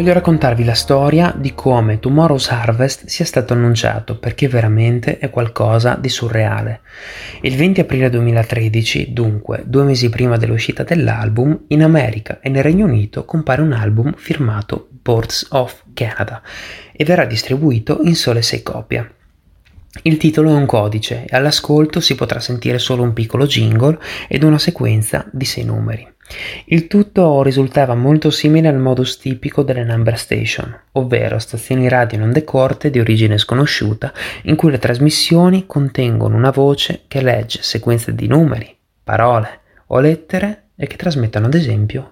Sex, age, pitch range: male, 30-49, 115-150 Hz